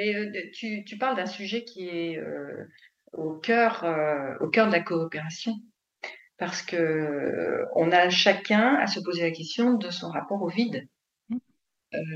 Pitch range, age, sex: 170-220 Hz, 50-69, female